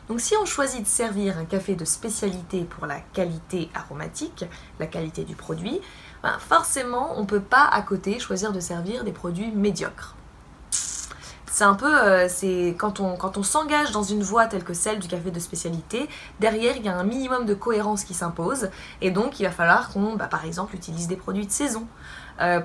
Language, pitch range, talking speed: French, 175-215 Hz, 195 wpm